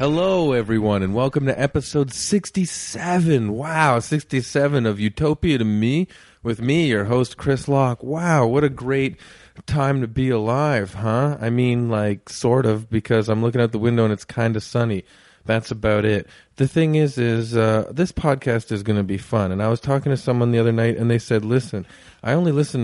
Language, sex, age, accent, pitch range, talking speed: English, male, 30-49, American, 110-135 Hz, 195 wpm